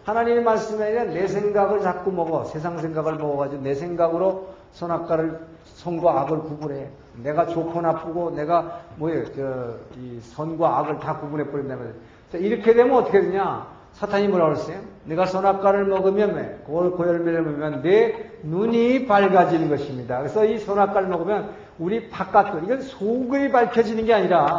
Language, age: Korean, 50-69